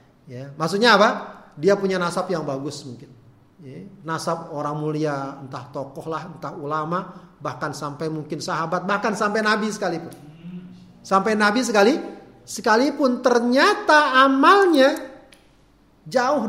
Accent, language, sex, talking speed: native, Indonesian, male, 115 wpm